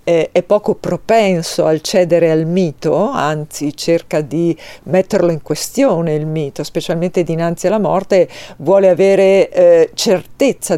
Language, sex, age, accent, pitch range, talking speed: Italian, female, 50-69, native, 170-210 Hz, 130 wpm